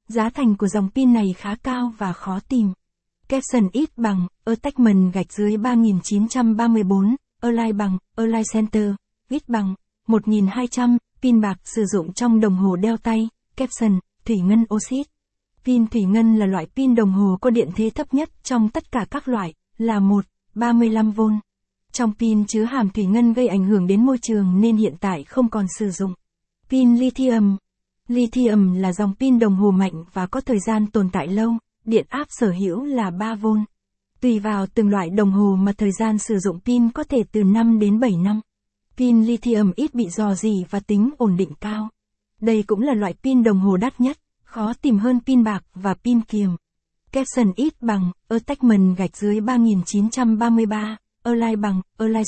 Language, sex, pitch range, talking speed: Vietnamese, female, 200-235 Hz, 180 wpm